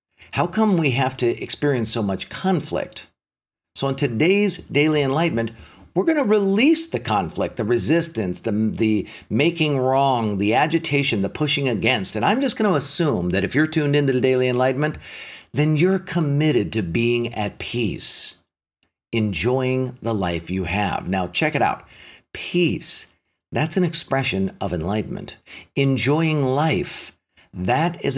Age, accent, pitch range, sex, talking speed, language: 50-69, American, 115-170 Hz, male, 150 wpm, English